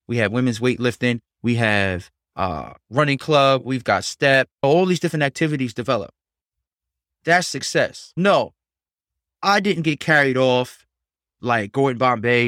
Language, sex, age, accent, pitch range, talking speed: English, male, 20-39, American, 110-135 Hz, 135 wpm